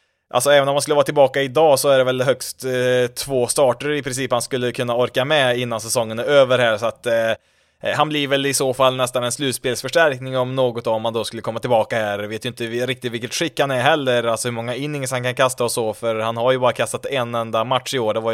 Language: Swedish